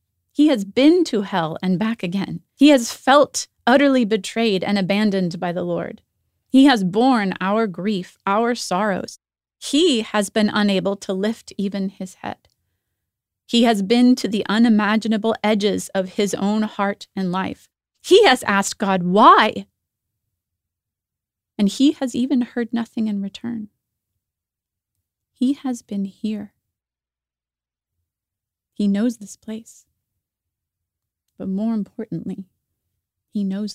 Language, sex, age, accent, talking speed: English, female, 30-49, American, 130 wpm